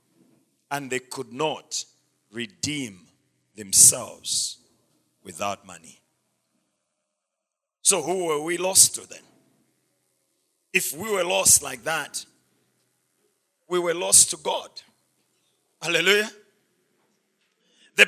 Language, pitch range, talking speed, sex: English, 180-250 Hz, 95 wpm, male